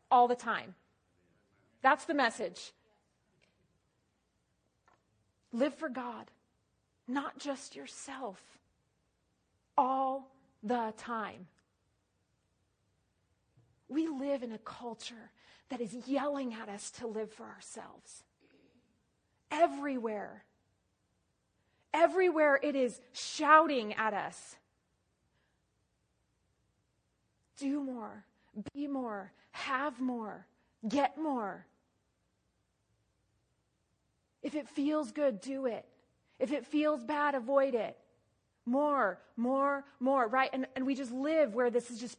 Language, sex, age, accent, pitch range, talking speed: English, female, 30-49, American, 225-285 Hz, 100 wpm